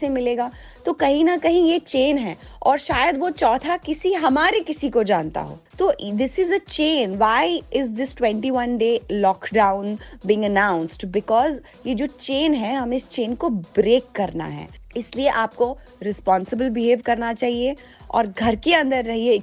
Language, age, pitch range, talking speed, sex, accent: Hindi, 20-39, 215-280 Hz, 140 wpm, female, native